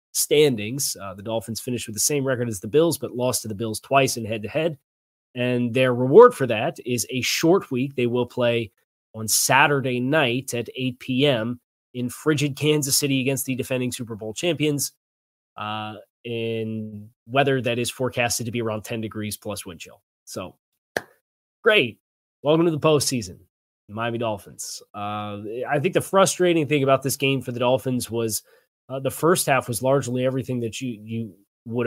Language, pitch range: English, 115-145 Hz